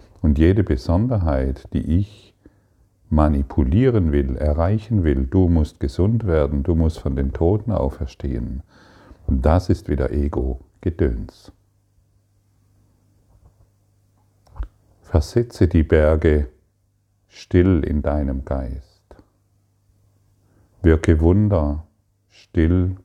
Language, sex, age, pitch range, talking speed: German, male, 50-69, 75-100 Hz, 90 wpm